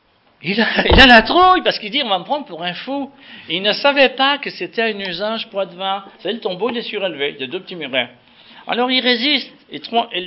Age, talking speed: 50-69, 270 wpm